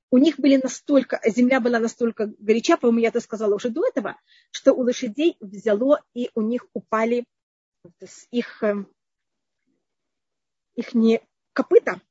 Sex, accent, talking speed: female, native, 135 wpm